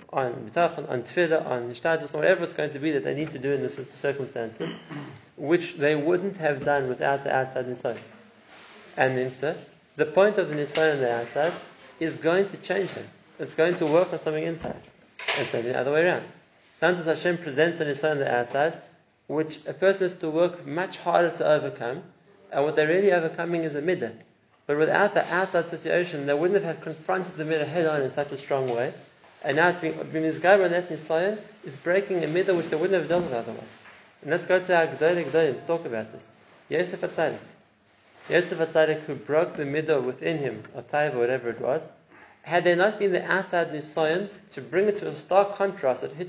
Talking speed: 205 wpm